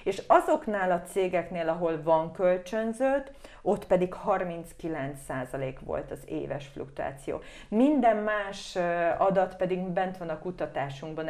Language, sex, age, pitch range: Hungarian, female, 30-49, 170-220 Hz